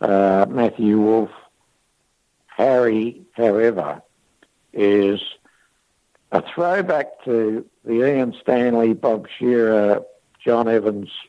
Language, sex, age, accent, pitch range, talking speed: English, male, 60-79, American, 105-125 Hz, 85 wpm